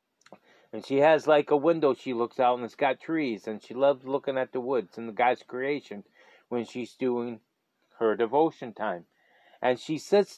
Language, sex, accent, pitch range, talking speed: English, male, American, 125-155 Hz, 190 wpm